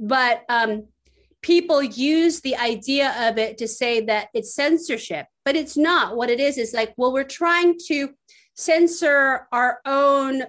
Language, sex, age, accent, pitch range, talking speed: English, female, 30-49, American, 225-290 Hz, 160 wpm